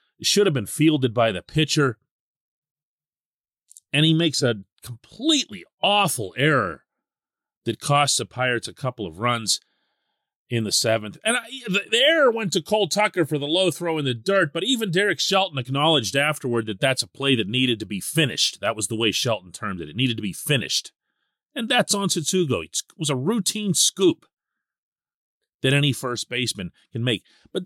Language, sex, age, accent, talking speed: English, male, 40-59, American, 180 wpm